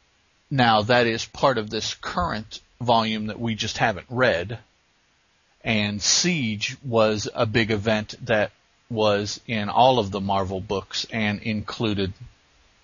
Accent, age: American, 40-59